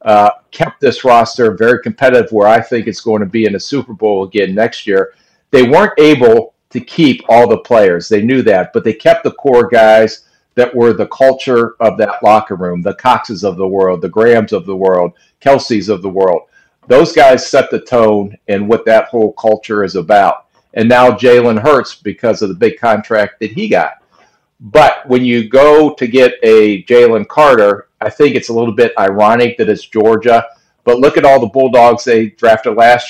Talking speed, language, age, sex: 200 wpm, English, 50-69, male